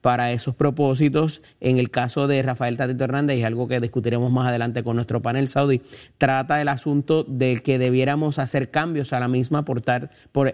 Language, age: Spanish, 30-49